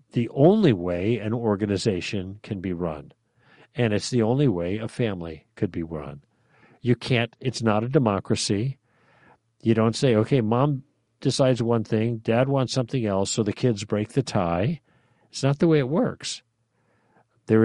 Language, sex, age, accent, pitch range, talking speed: English, male, 50-69, American, 100-130 Hz, 165 wpm